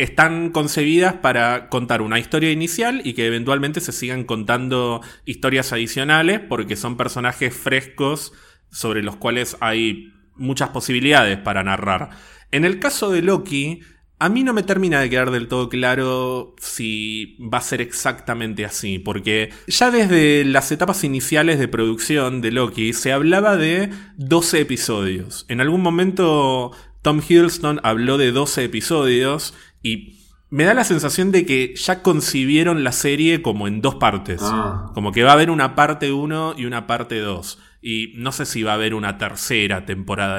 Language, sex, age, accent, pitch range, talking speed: Spanish, male, 20-39, Argentinian, 110-150 Hz, 160 wpm